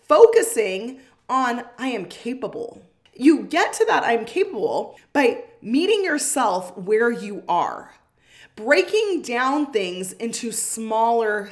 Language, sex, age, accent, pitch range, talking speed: English, female, 20-39, American, 230-325 Hz, 115 wpm